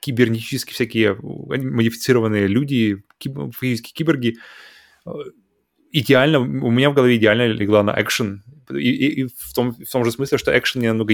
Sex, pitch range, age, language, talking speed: male, 110-130 Hz, 20-39, Russian, 145 wpm